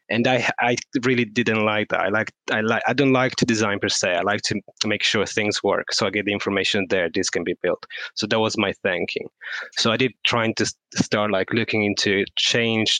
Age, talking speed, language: 20-39, 230 wpm, English